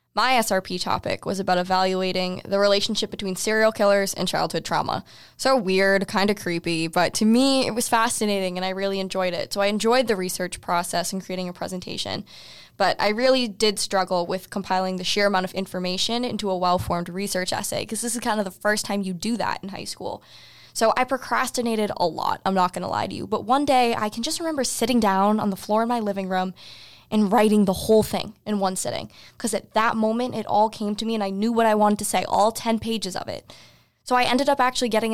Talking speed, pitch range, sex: 230 wpm, 185-225 Hz, female